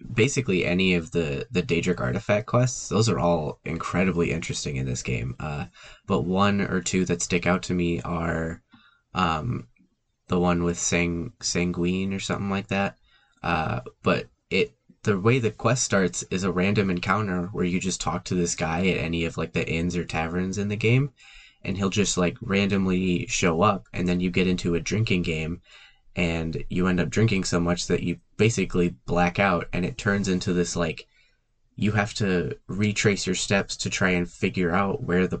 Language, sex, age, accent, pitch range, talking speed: English, male, 10-29, American, 85-100 Hz, 190 wpm